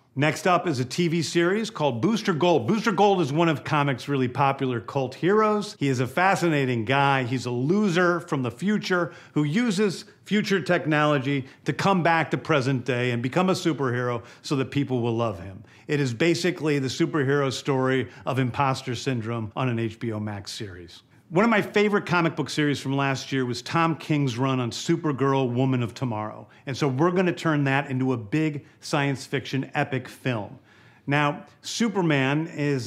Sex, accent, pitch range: male, American, 130-165 Hz